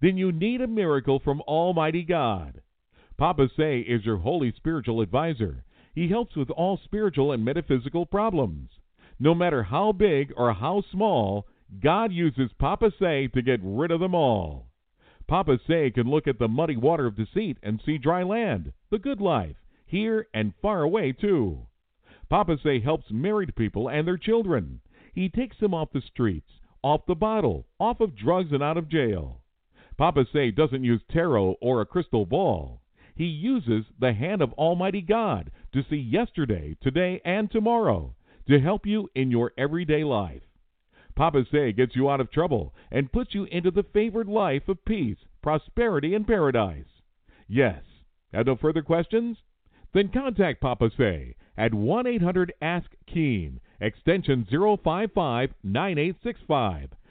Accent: American